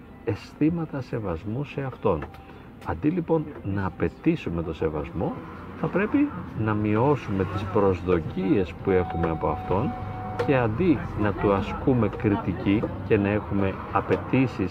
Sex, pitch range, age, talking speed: male, 85-110 Hz, 40-59, 120 wpm